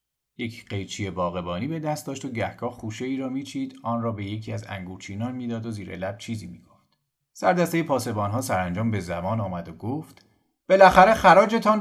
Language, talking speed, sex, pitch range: Persian, 185 wpm, male, 100-130 Hz